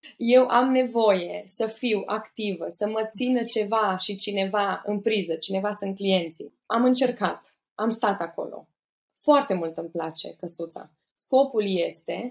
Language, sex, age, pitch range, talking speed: Romanian, female, 20-39, 195-255 Hz, 140 wpm